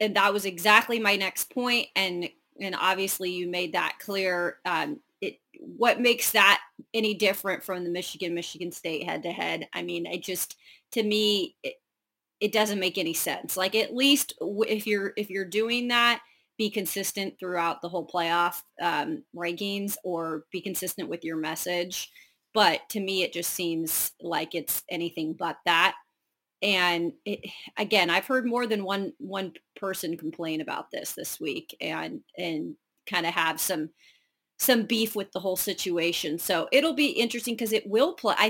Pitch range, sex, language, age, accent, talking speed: 175-225 Hz, female, English, 30-49, American, 175 wpm